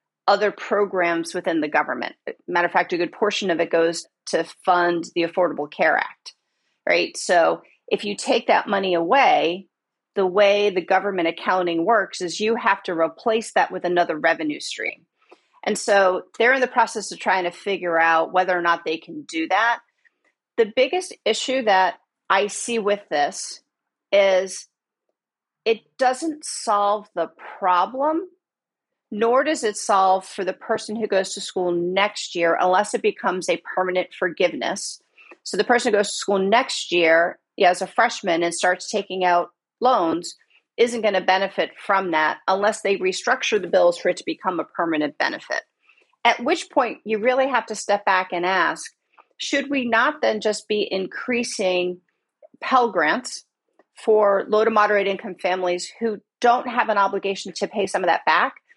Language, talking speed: English, 170 wpm